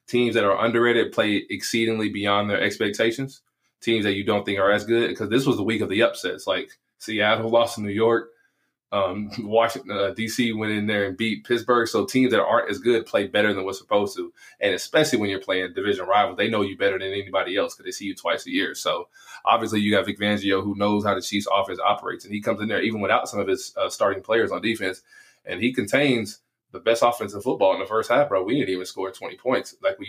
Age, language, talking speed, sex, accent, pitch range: 20-39, English, 245 wpm, male, American, 100-120 Hz